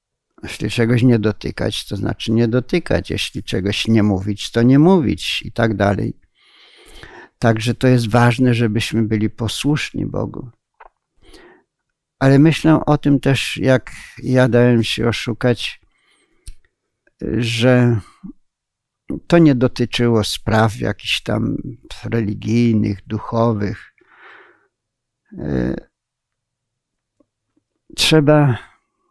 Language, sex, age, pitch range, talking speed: Polish, male, 50-69, 110-135 Hz, 95 wpm